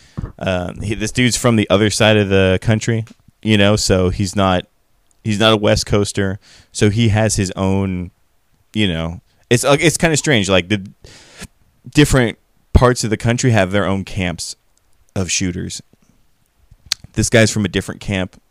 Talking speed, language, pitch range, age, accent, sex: 170 wpm, English, 90-115 Hz, 20-39, American, male